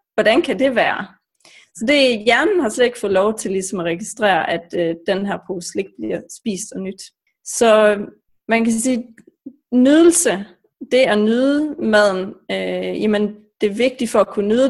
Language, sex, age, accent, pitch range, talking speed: Danish, female, 30-49, native, 195-260 Hz, 190 wpm